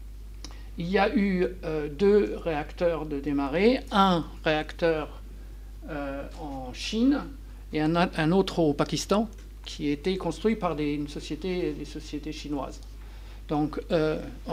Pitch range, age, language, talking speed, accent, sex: 150-190 Hz, 60-79, French, 135 wpm, French, male